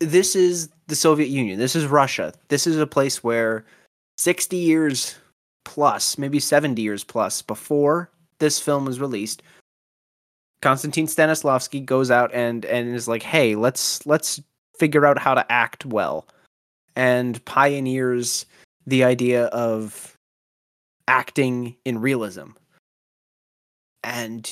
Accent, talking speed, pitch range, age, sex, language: American, 125 wpm, 115-145 Hz, 30-49, male, English